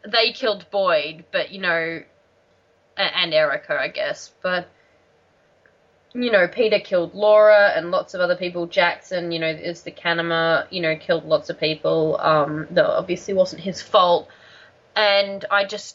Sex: female